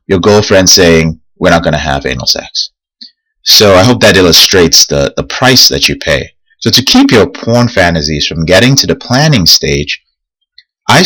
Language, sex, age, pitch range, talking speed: English, male, 30-49, 80-115 Hz, 180 wpm